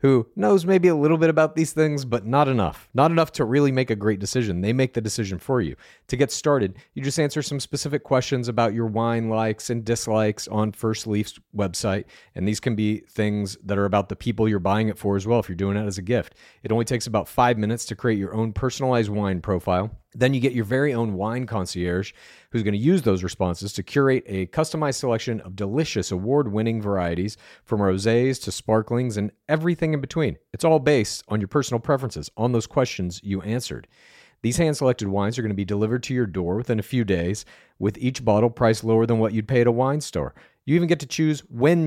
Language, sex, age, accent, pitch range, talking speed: English, male, 40-59, American, 105-140 Hz, 225 wpm